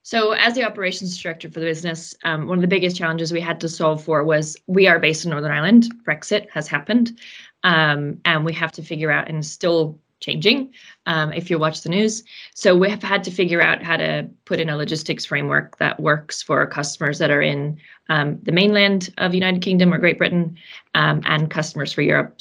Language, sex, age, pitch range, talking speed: English, female, 20-39, 155-185 Hz, 215 wpm